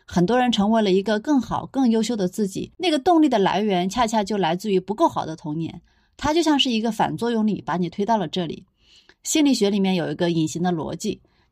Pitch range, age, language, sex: 180-230 Hz, 30-49, Chinese, female